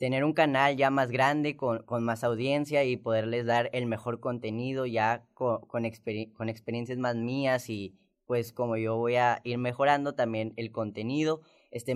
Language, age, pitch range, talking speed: Spanish, 10-29, 120-155 Hz, 180 wpm